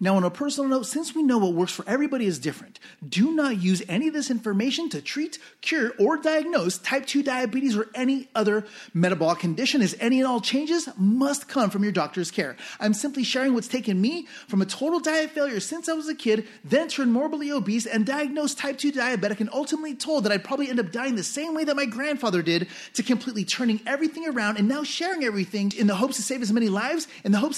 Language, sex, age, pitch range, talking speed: English, male, 30-49, 200-275 Hz, 230 wpm